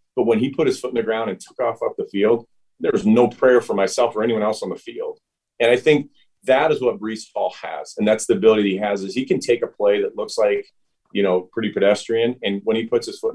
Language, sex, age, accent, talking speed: English, male, 30-49, American, 280 wpm